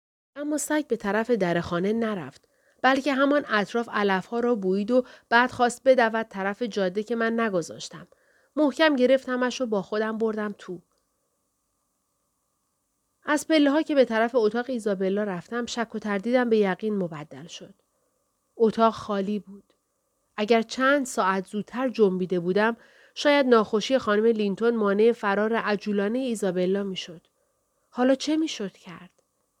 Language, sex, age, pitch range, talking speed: Persian, female, 40-59, 190-255 Hz, 130 wpm